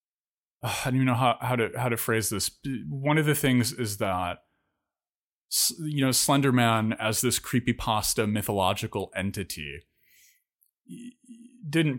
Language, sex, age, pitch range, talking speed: English, male, 30-49, 95-120 Hz, 130 wpm